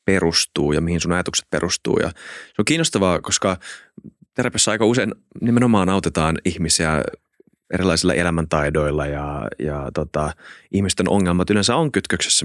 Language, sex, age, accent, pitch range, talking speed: Finnish, male, 30-49, native, 80-95 Hz, 130 wpm